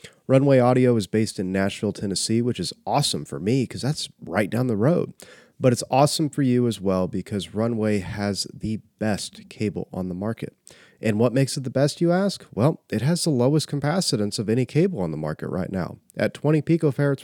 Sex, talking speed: male, 205 wpm